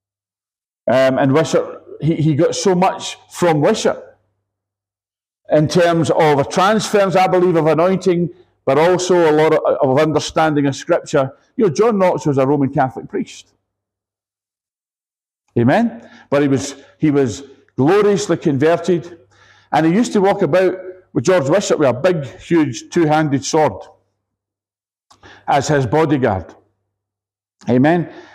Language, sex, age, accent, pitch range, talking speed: English, male, 50-69, British, 100-160 Hz, 140 wpm